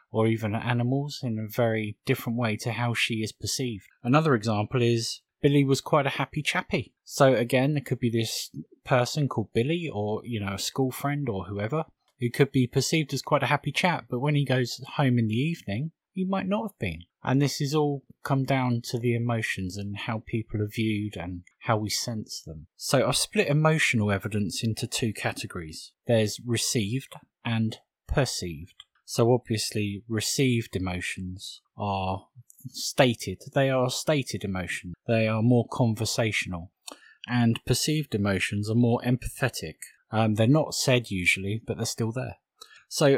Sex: male